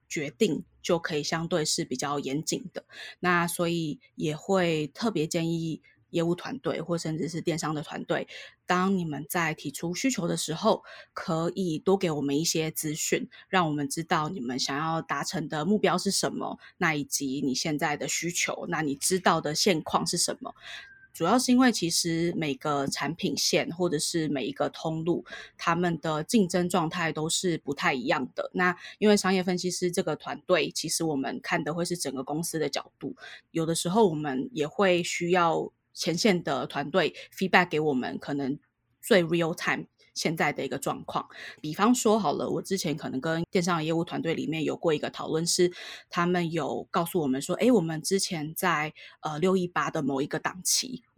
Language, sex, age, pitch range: Chinese, female, 20-39, 150-180 Hz